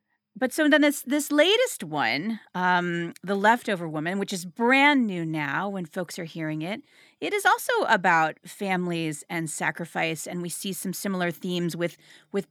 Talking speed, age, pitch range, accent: 175 wpm, 40-59, 170-235 Hz, American